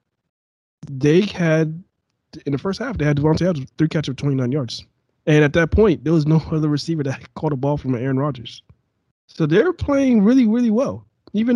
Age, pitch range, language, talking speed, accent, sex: 20-39, 120-160 Hz, English, 200 wpm, American, male